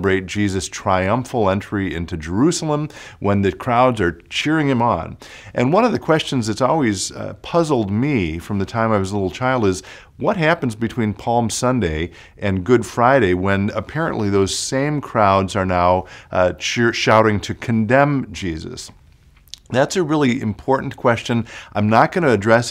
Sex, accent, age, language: male, American, 50-69, English